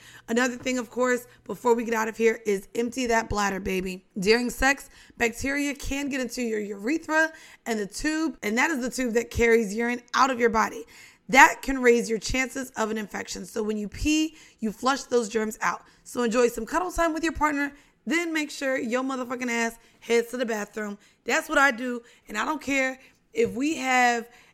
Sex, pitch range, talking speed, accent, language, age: female, 225-275 Hz, 205 wpm, American, English, 20-39